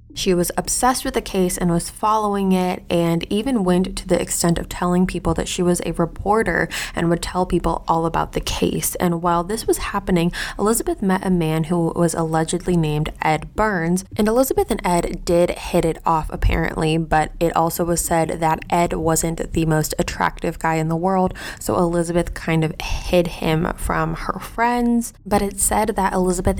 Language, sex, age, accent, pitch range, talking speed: English, female, 20-39, American, 165-190 Hz, 190 wpm